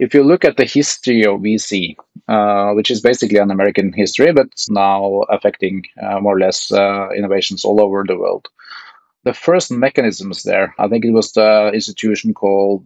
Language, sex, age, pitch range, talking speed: English, male, 30-49, 100-115 Hz, 185 wpm